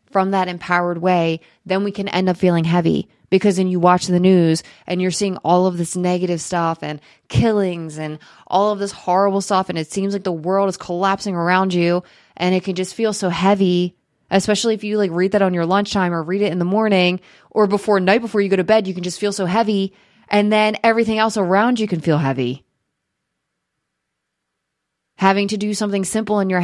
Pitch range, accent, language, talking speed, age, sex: 175-200 Hz, American, English, 215 wpm, 20-39, female